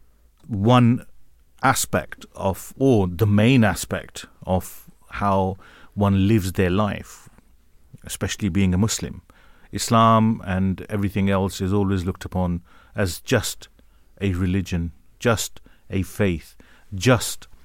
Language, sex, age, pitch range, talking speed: English, male, 40-59, 90-105 Hz, 110 wpm